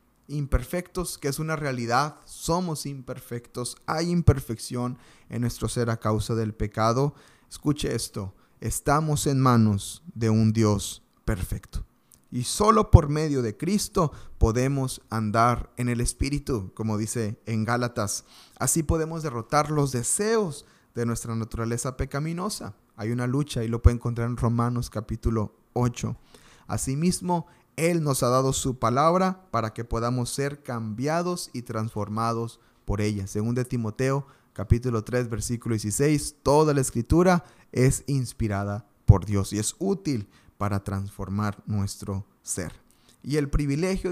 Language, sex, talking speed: Spanish, male, 135 wpm